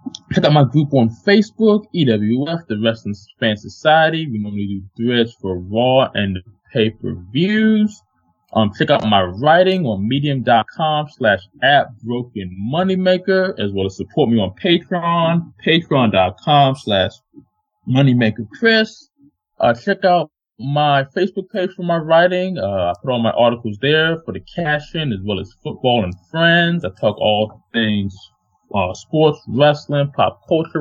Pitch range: 110-165 Hz